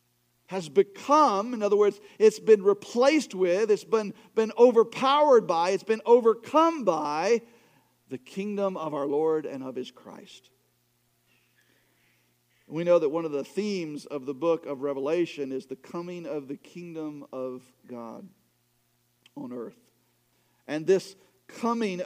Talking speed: 140 wpm